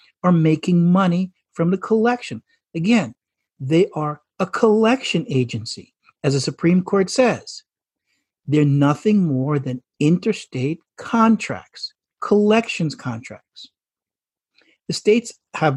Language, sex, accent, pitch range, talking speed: English, male, American, 130-185 Hz, 105 wpm